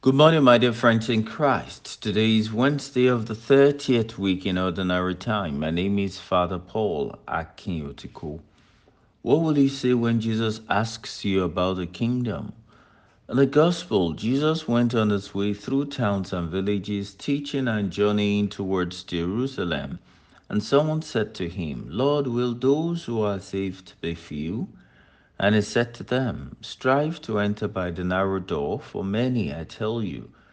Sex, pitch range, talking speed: male, 95-125 Hz, 160 wpm